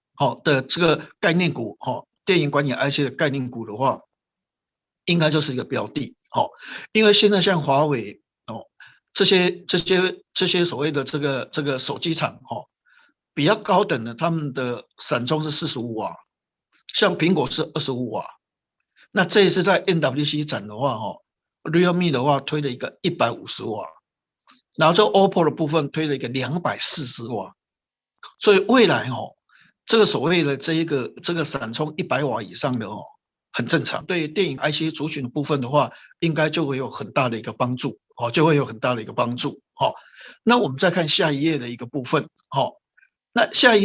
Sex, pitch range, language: male, 135-180 Hz, Chinese